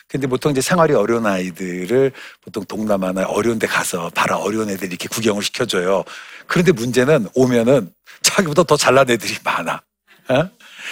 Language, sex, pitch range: Korean, male, 110-150 Hz